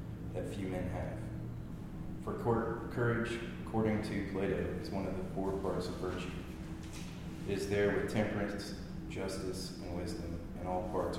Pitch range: 90-100 Hz